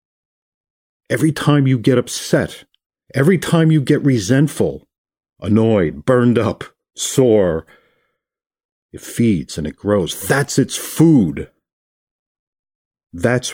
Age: 50-69